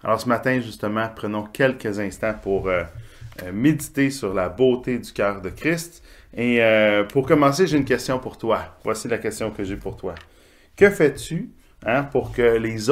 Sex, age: male, 30-49